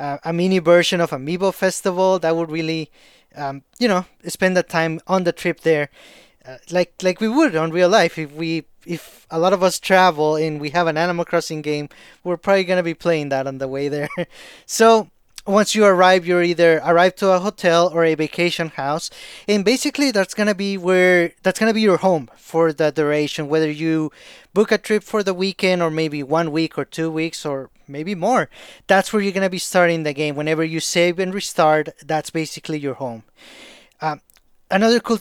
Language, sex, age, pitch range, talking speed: English, male, 20-39, 160-190 Hz, 205 wpm